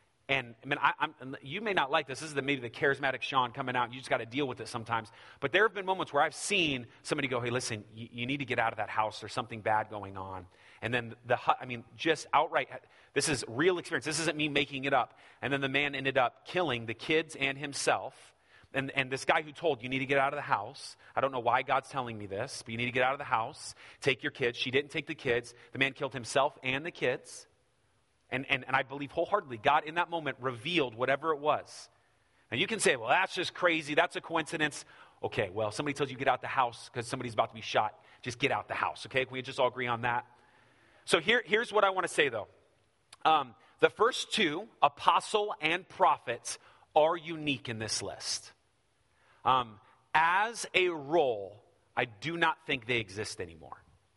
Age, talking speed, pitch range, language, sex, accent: 30-49, 235 wpm, 120-155 Hz, English, male, American